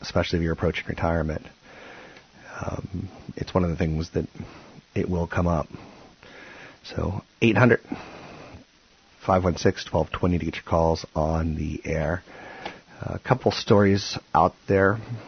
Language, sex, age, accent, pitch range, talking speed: English, male, 40-59, American, 80-95 Hz, 120 wpm